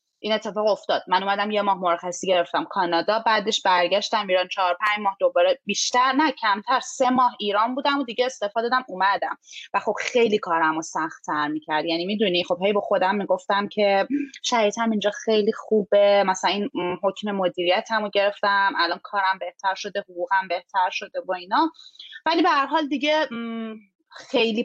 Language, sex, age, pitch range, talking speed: Persian, female, 20-39, 180-245 Hz, 165 wpm